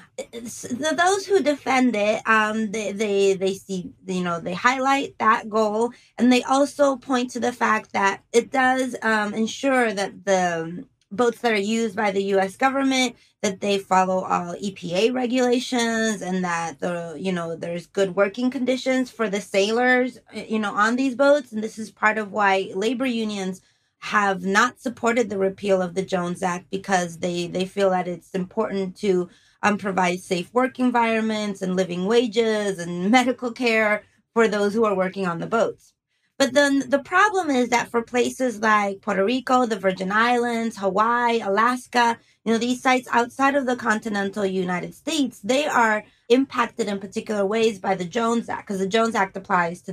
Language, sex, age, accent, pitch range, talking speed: English, female, 30-49, American, 195-245 Hz, 175 wpm